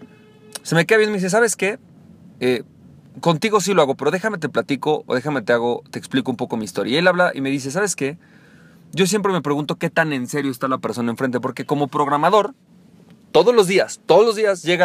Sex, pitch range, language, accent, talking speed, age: male, 145-200 Hz, Spanish, Mexican, 230 wpm, 40-59